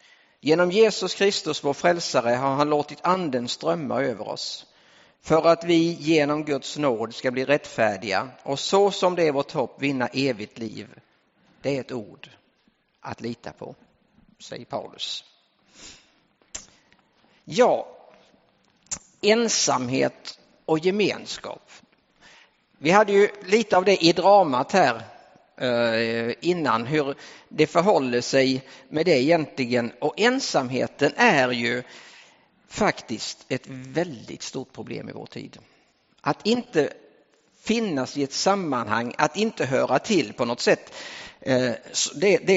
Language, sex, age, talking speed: English, male, 50-69, 125 wpm